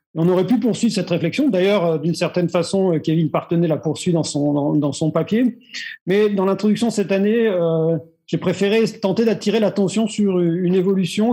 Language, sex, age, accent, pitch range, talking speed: French, male, 40-59, French, 160-200 Hz, 180 wpm